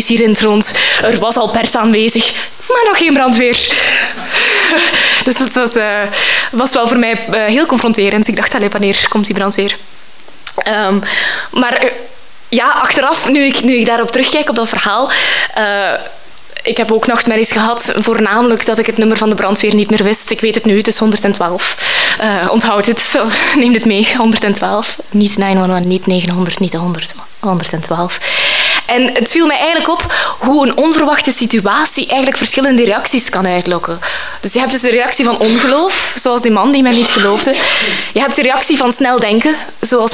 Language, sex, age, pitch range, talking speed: Dutch, female, 20-39, 205-245 Hz, 180 wpm